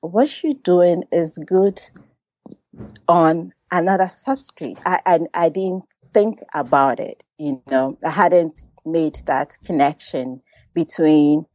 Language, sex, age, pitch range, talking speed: English, female, 30-49, 140-180 Hz, 120 wpm